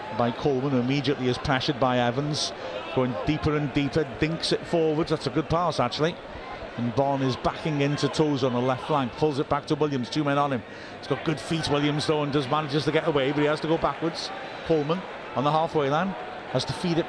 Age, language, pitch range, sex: 50-69, English, 120-160 Hz, male